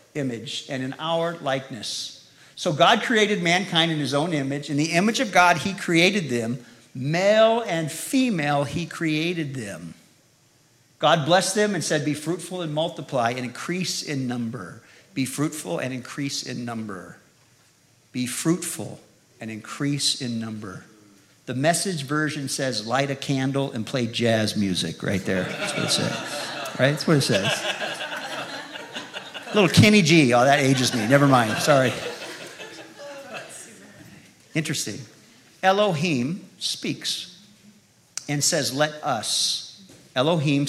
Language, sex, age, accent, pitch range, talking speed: English, male, 50-69, American, 125-170 Hz, 135 wpm